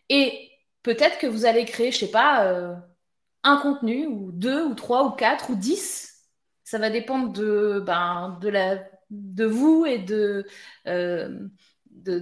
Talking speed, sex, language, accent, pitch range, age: 165 wpm, female, French, French, 220-310 Hz, 20-39